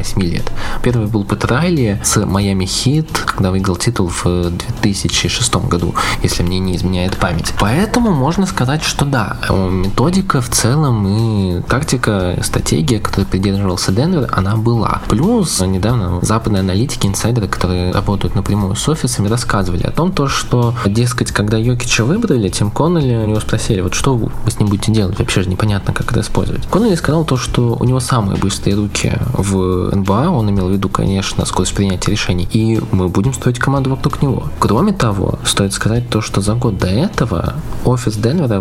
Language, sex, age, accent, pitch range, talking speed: Russian, male, 20-39, native, 100-125 Hz, 170 wpm